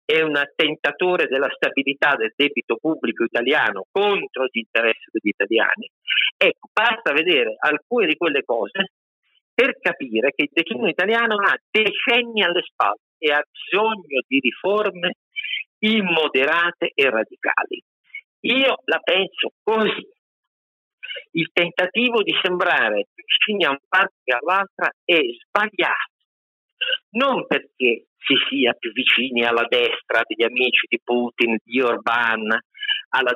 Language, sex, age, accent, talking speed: Italian, male, 50-69, native, 125 wpm